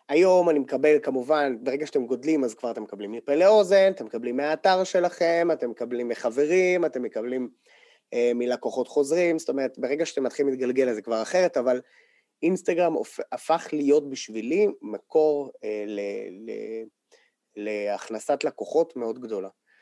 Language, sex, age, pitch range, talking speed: Hebrew, male, 20-39, 125-180 Hz, 150 wpm